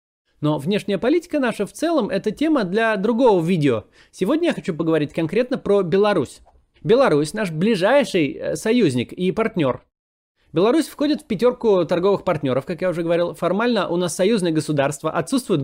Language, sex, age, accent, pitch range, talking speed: Russian, male, 20-39, native, 155-220 Hz, 155 wpm